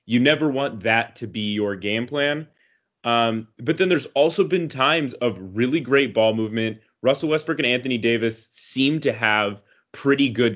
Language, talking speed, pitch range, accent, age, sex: English, 175 wpm, 110-140 Hz, American, 20-39, male